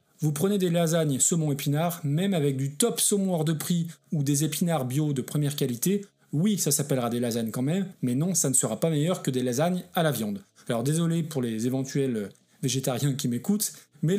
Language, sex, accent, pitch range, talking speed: French, male, French, 140-180 Hz, 205 wpm